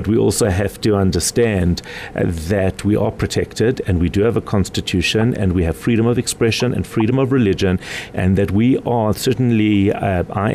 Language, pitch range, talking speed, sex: English, 95-110 Hz, 190 wpm, male